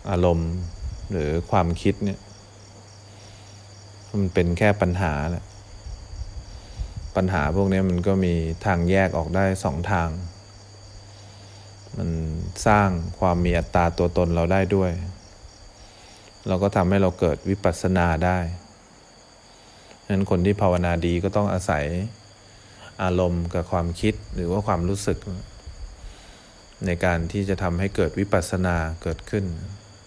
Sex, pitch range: male, 90-100 Hz